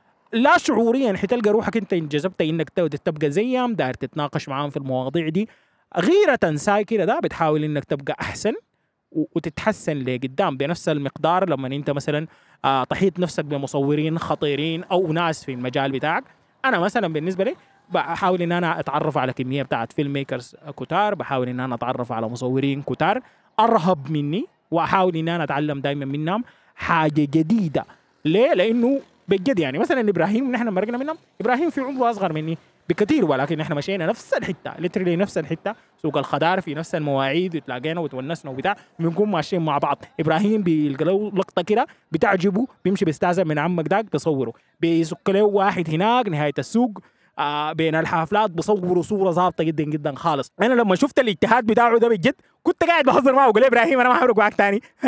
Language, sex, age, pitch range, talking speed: Arabic, male, 20-39, 150-215 Hz, 160 wpm